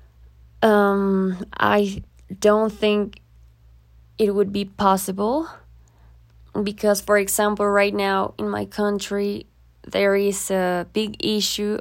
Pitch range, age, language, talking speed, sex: 180-210 Hz, 20-39, English, 105 wpm, female